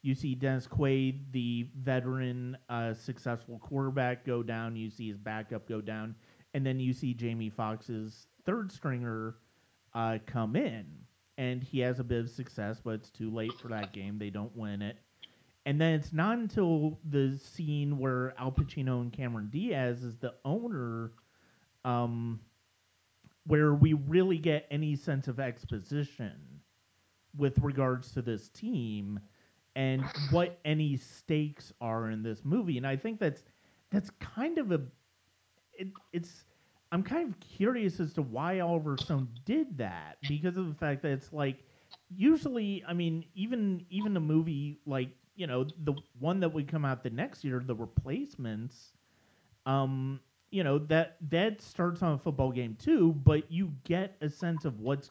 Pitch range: 115-160 Hz